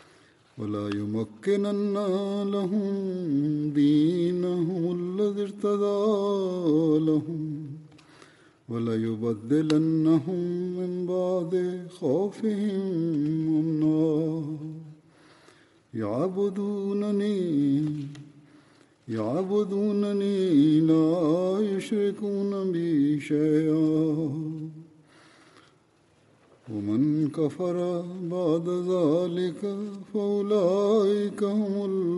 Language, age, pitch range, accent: Malayalam, 50-69, 155-195 Hz, native